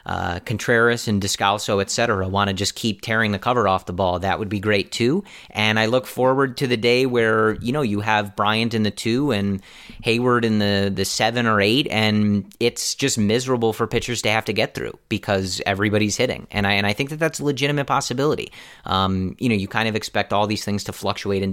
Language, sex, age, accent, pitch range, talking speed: English, male, 30-49, American, 100-120 Hz, 230 wpm